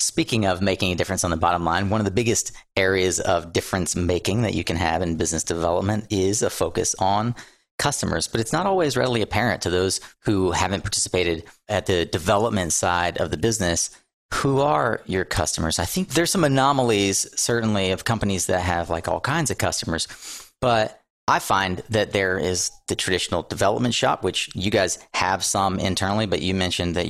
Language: English